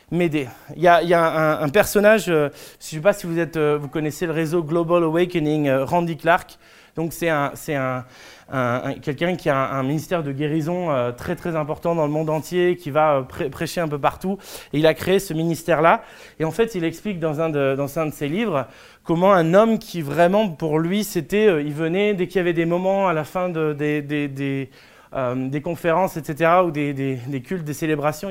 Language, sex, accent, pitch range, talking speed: French, male, French, 150-175 Hz, 240 wpm